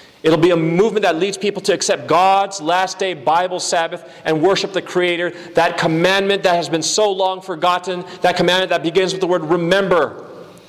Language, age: English, 40-59